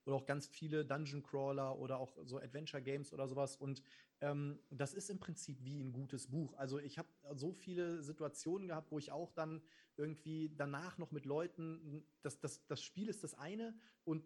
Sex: male